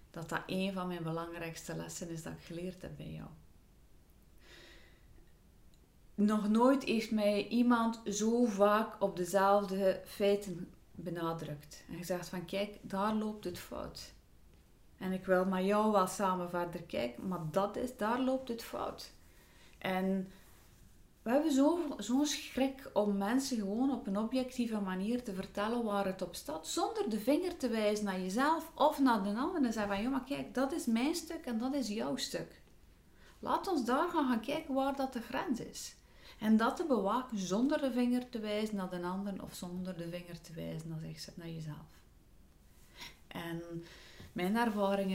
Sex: female